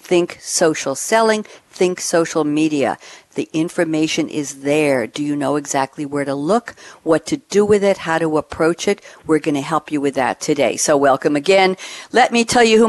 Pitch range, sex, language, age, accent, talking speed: 150-185 Hz, female, English, 60-79, American, 195 wpm